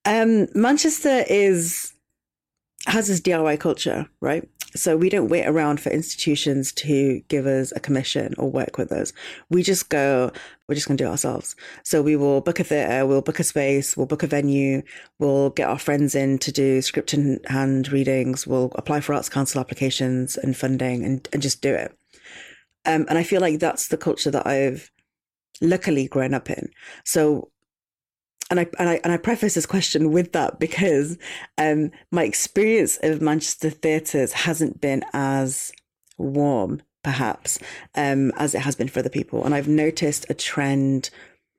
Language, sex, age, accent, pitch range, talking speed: English, female, 30-49, British, 135-165 Hz, 175 wpm